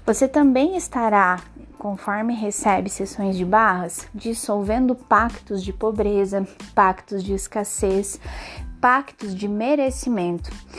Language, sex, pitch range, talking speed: Portuguese, female, 200-275 Hz, 100 wpm